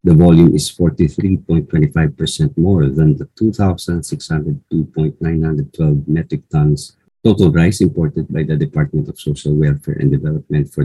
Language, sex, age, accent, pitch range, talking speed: English, male, 50-69, Filipino, 75-95 Hz, 120 wpm